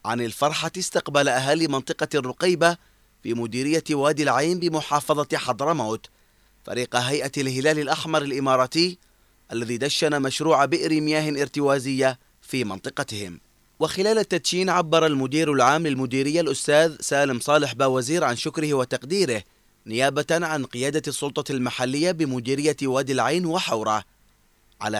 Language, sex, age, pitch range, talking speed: Arabic, male, 30-49, 135-170 Hz, 115 wpm